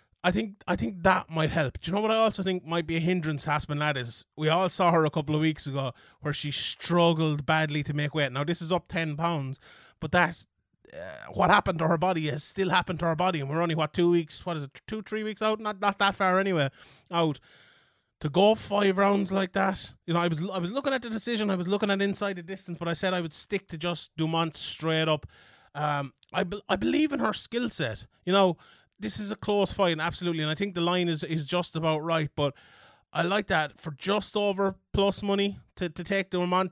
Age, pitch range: 20-39, 155-190 Hz